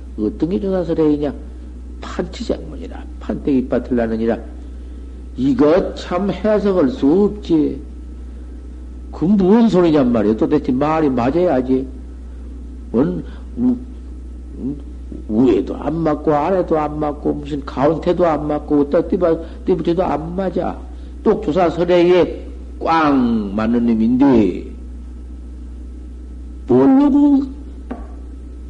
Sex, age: male, 50-69